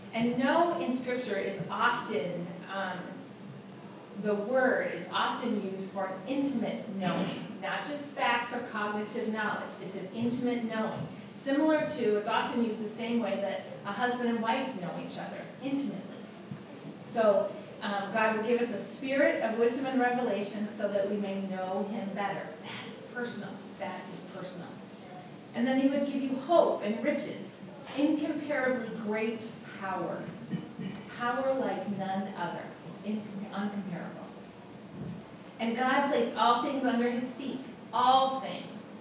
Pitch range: 195-255 Hz